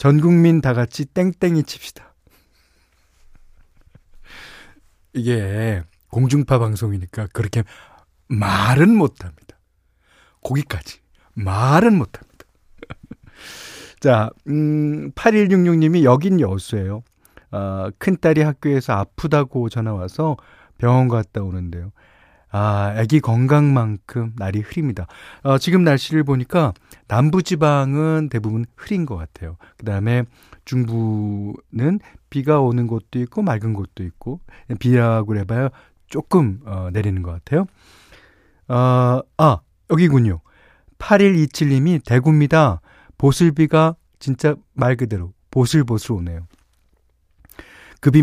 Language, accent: Korean, native